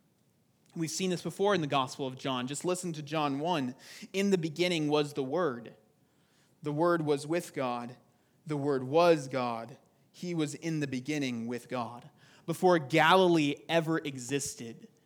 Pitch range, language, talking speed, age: 140-180 Hz, English, 160 wpm, 30-49